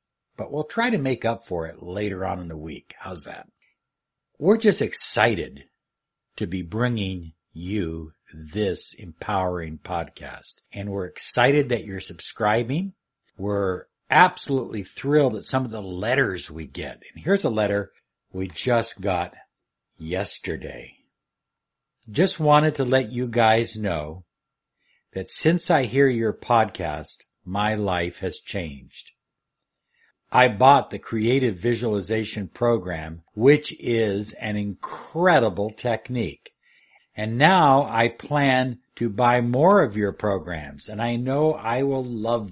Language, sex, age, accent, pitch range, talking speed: English, male, 60-79, American, 95-135 Hz, 130 wpm